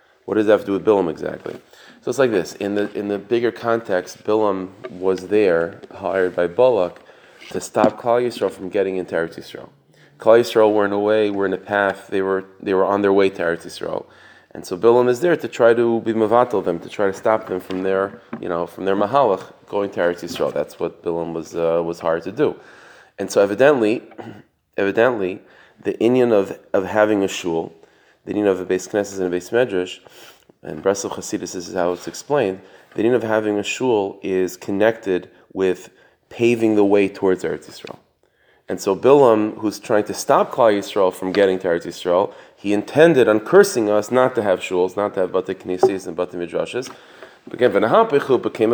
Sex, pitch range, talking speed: male, 95-115 Hz, 205 wpm